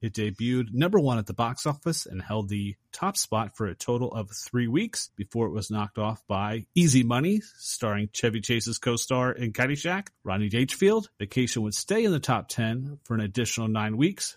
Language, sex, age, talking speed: English, male, 30-49, 195 wpm